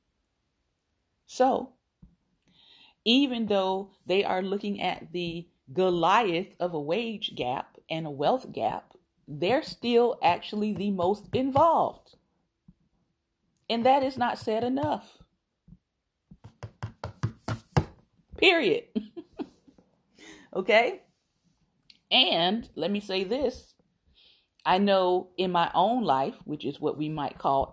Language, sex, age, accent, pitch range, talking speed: English, female, 40-59, American, 175-235 Hz, 105 wpm